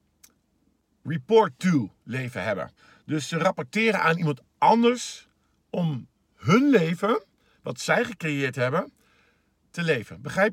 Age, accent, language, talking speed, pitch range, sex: 50-69, Dutch, Dutch, 115 wpm, 140-190 Hz, male